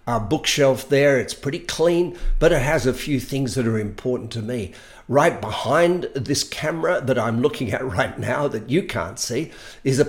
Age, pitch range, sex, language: 50-69, 115-135 Hz, male, English